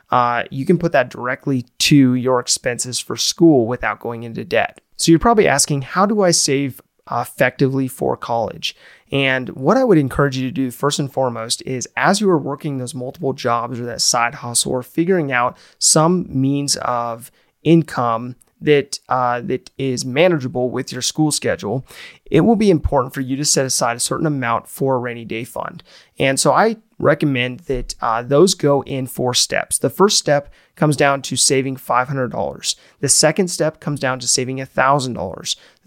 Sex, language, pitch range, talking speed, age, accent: male, English, 130-160 Hz, 180 wpm, 30-49, American